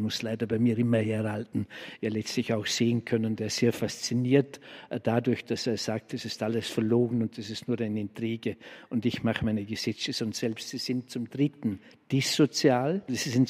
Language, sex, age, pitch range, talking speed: German, male, 60-79, 115-130 Hz, 190 wpm